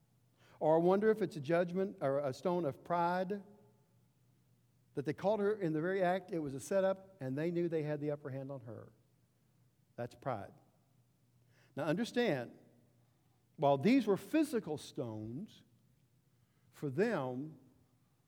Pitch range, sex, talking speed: 125-155 Hz, male, 150 wpm